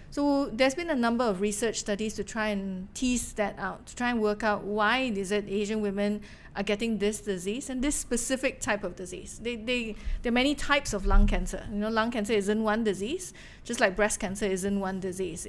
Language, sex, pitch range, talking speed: English, female, 200-230 Hz, 220 wpm